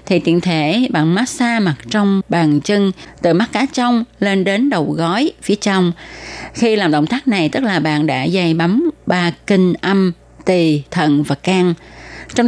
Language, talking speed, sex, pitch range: Vietnamese, 185 wpm, female, 155-210 Hz